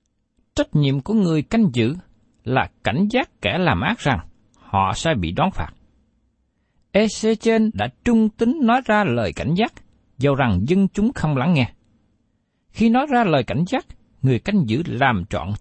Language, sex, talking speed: Vietnamese, male, 175 wpm